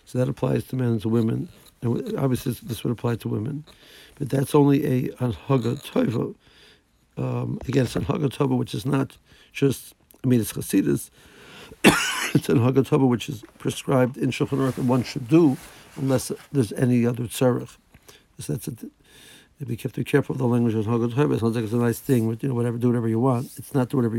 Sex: male